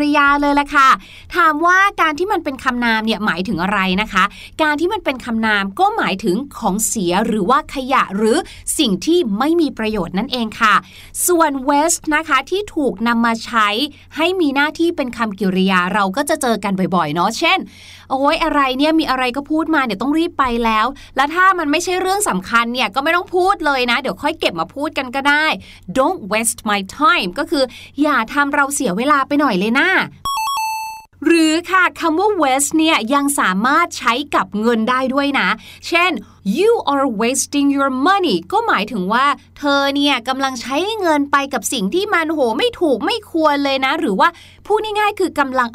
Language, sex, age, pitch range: Thai, female, 20-39, 230-320 Hz